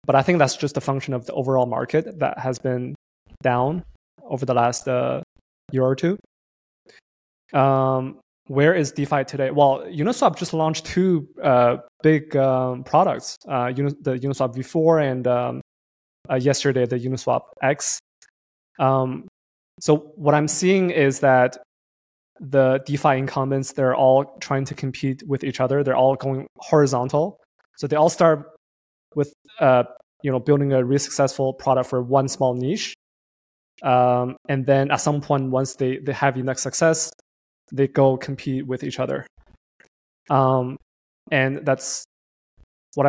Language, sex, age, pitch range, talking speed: English, male, 20-39, 125-145 Hz, 150 wpm